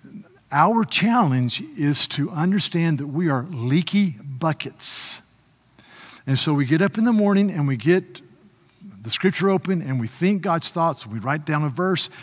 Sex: male